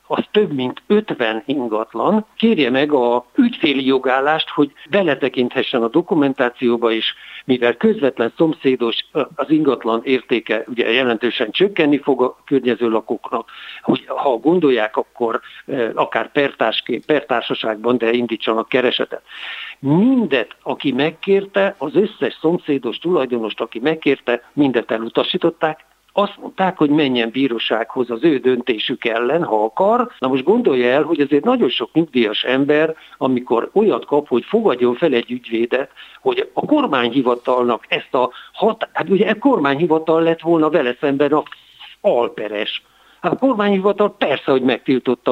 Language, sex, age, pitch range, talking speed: Hungarian, male, 60-79, 120-165 Hz, 130 wpm